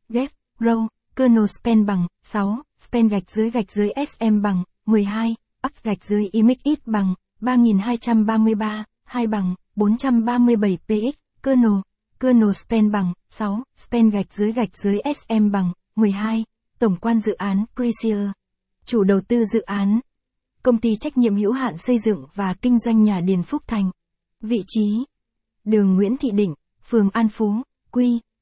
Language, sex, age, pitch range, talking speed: Vietnamese, female, 20-39, 205-240 Hz, 150 wpm